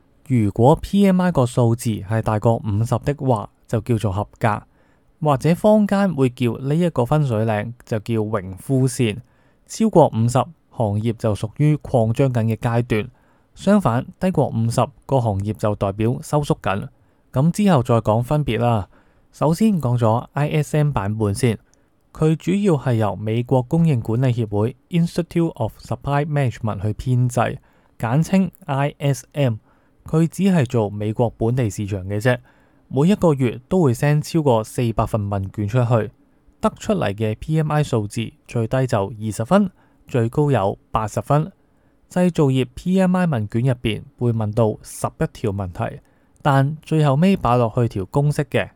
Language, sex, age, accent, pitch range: Chinese, male, 20-39, native, 110-150 Hz